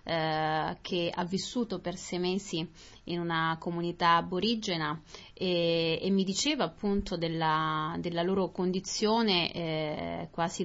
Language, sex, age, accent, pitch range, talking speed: Italian, female, 30-49, native, 165-185 Hz, 125 wpm